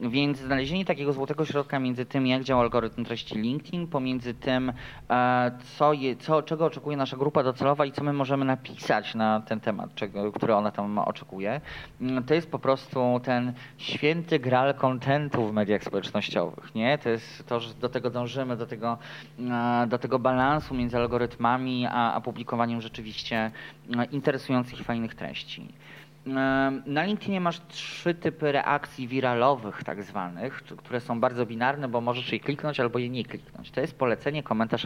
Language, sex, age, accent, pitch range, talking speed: Polish, male, 30-49, native, 120-145 Hz, 160 wpm